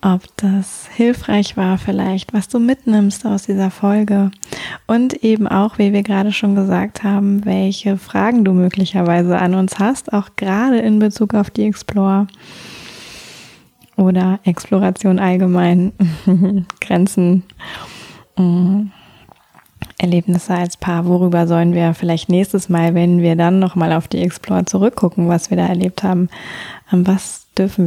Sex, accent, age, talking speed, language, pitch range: female, German, 20-39, 135 wpm, German, 180-205 Hz